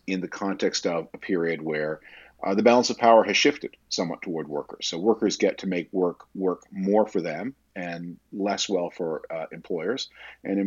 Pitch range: 85-110 Hz